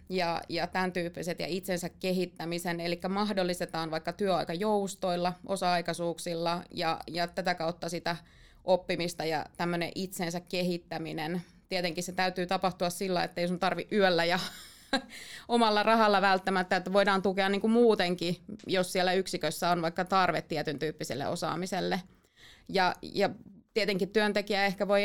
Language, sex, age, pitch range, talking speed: Finnish, female, 30-49, 170-195 Hz, 135 wpm